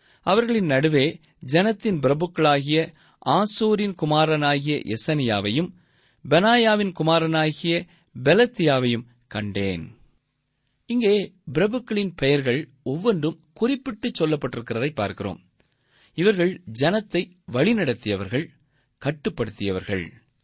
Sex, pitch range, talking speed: male, 125-185 Hz, 65 wpm